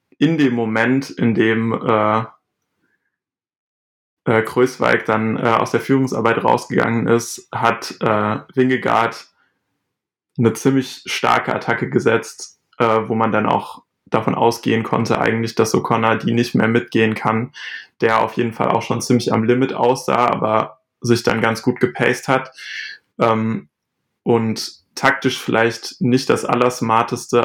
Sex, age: male, 20-39